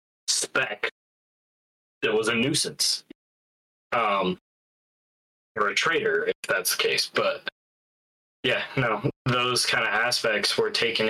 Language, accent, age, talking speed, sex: English, American, 20-39, 120 wpm, male